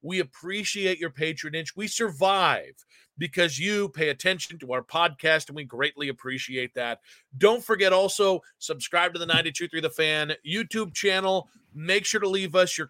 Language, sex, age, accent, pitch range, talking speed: English, male, 40-59, American, 150-185 Hz, 165 wpm